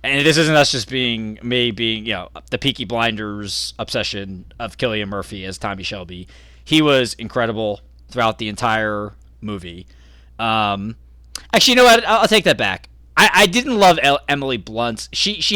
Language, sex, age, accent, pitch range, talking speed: English, male, 20-39, American, 100-130 Hz, 175 wpm